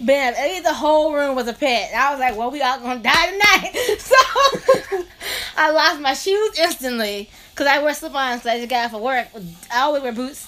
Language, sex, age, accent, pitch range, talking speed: English, female, 20-39, American, 250-315 Hz, 225 wpm